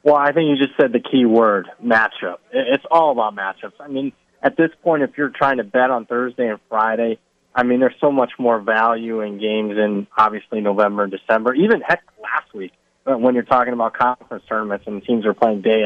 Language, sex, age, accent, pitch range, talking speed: English, male, 20-39, American, 110-135 Hz, 215 wpm